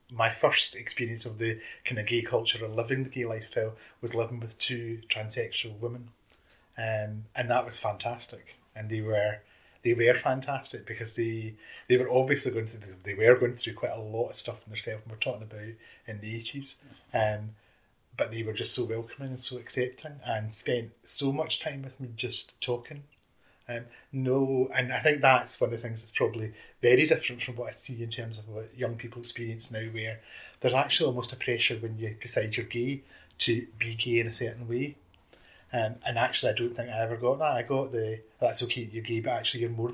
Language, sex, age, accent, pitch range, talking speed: English, male, 30-49, British, 110-125 Hz, 215 wpm